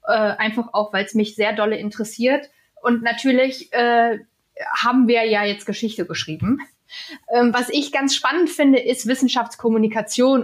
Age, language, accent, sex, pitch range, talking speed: 20-39, German, German, female, 200-255 Hz, 150 wpm